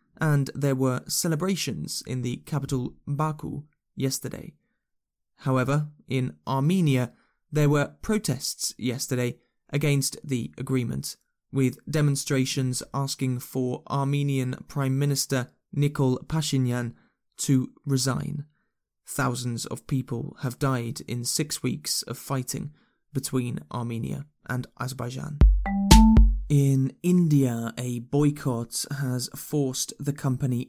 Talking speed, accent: 100 wpm, British